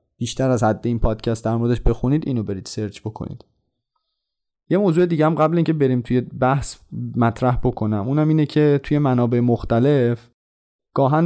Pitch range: 110-145 Hz